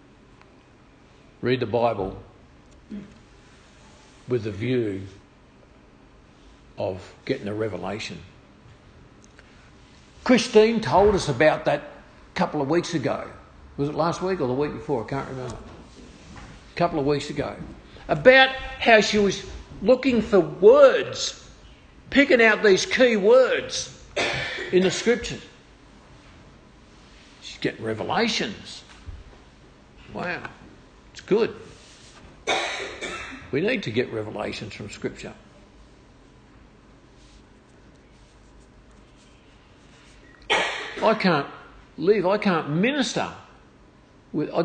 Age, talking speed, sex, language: 50-69, 95 wpm, male, English